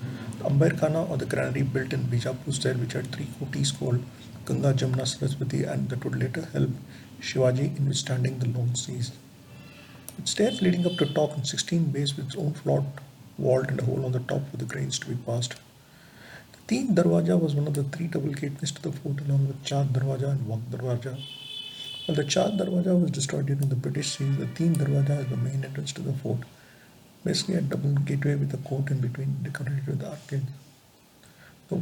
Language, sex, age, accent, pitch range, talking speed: English, male, 50-69, Indian, 130-155 Hz, 200 wpm